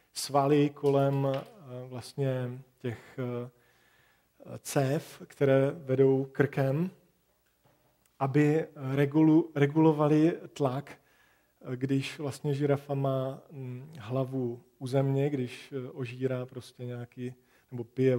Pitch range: 125-140 Hz